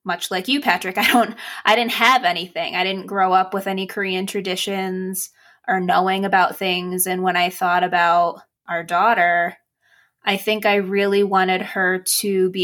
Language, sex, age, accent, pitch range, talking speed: English, female, 20-39, American, 185-245 Hz, 175 wpm